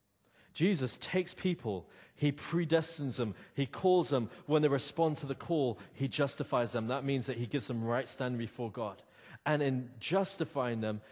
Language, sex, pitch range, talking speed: English, male, 110-145 Hz, 175 wpm